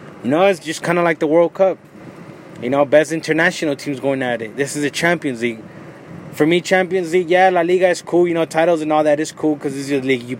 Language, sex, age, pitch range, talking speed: English, male, 20-39, 145-170 Hz, 265 wpm